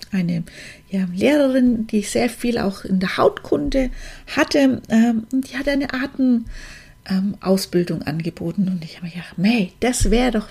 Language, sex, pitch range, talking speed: German, female, 205-265 Hz, 155 wpm